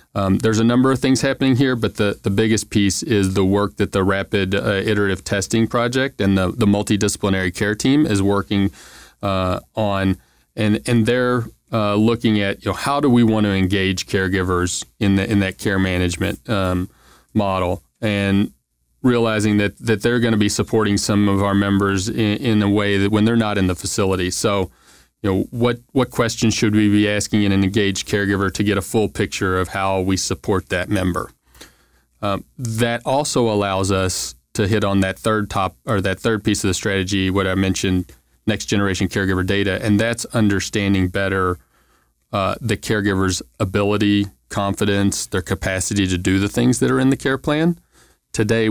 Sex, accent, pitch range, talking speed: male, American, 95-110 Hz, 185 wpm